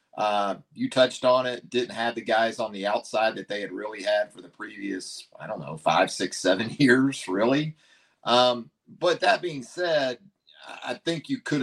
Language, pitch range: English, 115-135 Hz